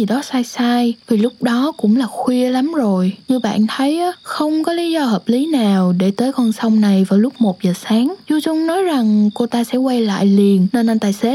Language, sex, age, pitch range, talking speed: Vietnamese, female, 10-29, 210-260 Hz, 245 wpm